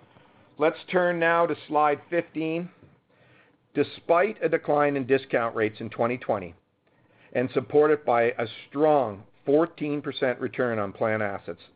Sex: male